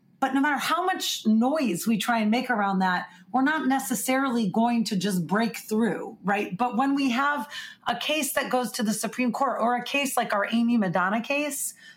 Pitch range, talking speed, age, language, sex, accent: 195-240 Hz, 205 wpm, 30-49, English, female, American